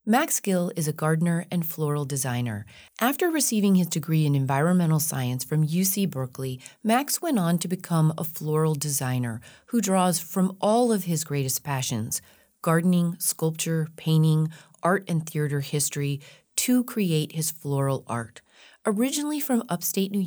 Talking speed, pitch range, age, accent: 140 wpm, 140-205 Hz, 30-49, American